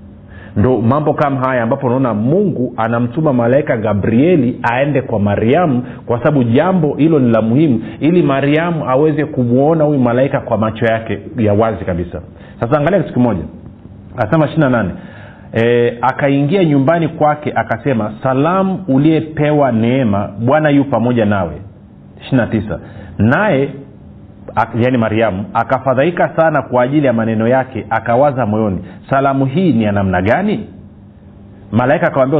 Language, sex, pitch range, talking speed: Swahili, male, 110-145 Hz, 135 wpm